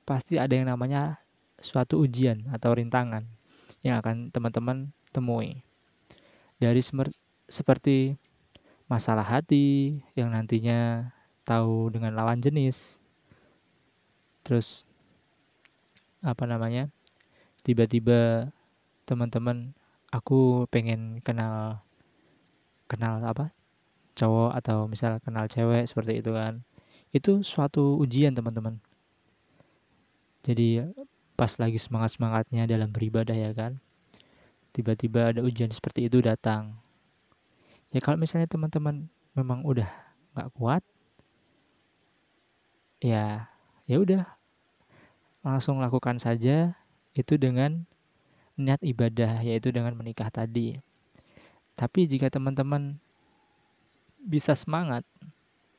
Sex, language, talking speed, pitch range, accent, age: male, Indonesian, 90 wpm, 115-140 Hz, native, 20-39